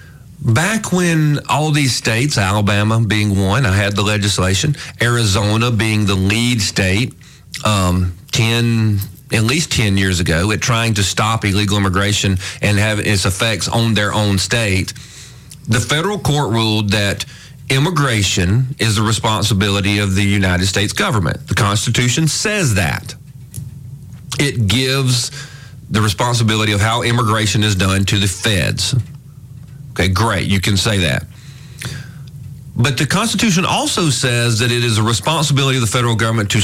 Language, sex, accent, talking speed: English, male, American, 145 wpm